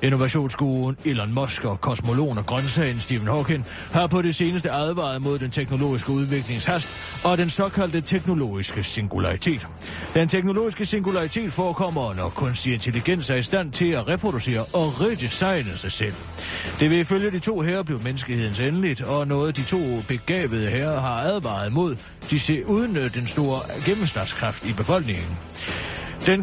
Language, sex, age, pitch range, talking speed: Danish, male, 30-49, 110-160 Hz, 150 wpm